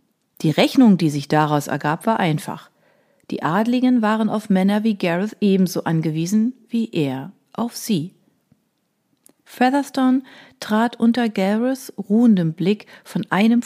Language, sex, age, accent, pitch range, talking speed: German, female, 40-59, German, 160-215 Hz, 125 wpm